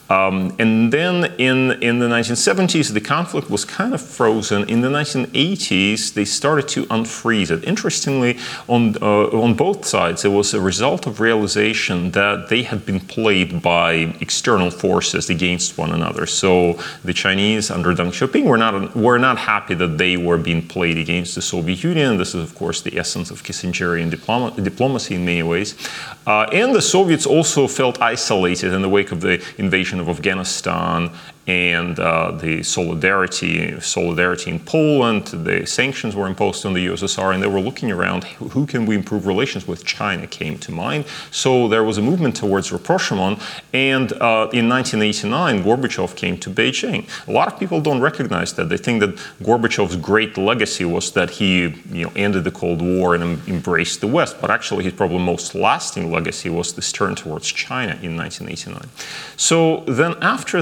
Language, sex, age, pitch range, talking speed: Swedish, male, 30-49, 90-120 Hz, 175 wpm